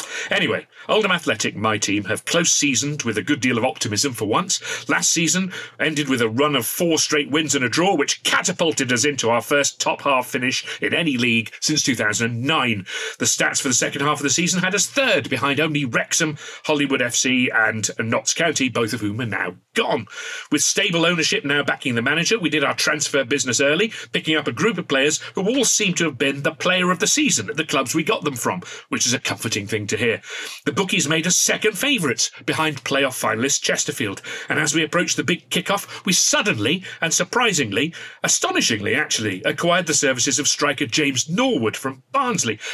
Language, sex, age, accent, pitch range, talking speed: English, male, 40-59, British, 130-170 Hz, 200 wpm